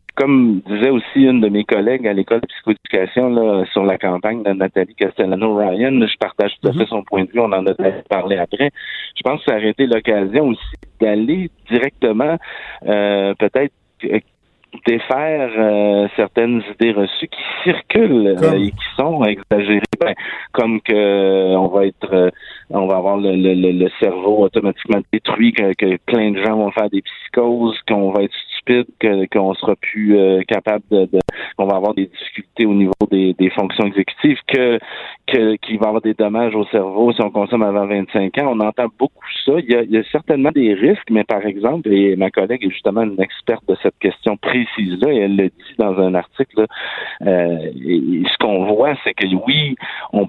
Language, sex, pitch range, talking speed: French, male, 95-115 Hz, 195 wpm